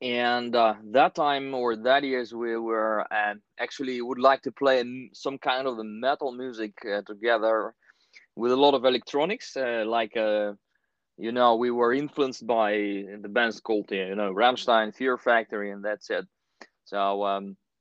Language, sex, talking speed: English, male, 165 wpm